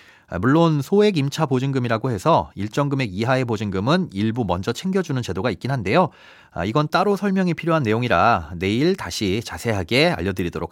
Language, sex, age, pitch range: Korean, male, 30-49, 110-160 Hz